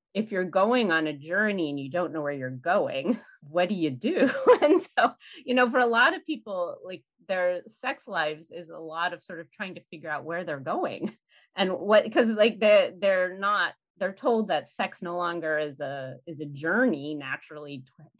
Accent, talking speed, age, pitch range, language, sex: American, 210 wpm, 30-49, 150-200 Hz, English, female